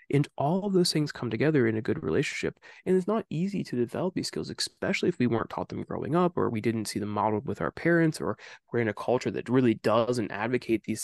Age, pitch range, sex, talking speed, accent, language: 20-39, 115-160 Hz, male, 250 wpm, American, English